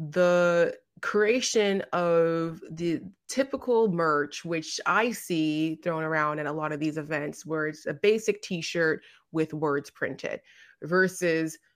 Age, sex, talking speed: 30-49, female, 135 wpm